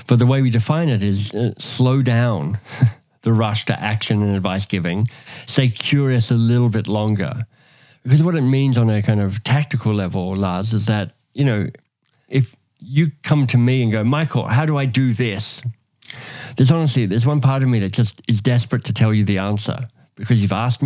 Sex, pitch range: male, 110-135 Hz